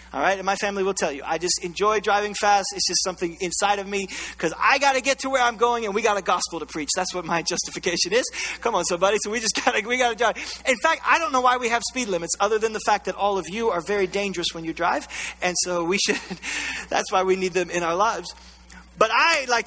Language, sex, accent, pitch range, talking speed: English, male, American, 175-250 Hz, 270 wpm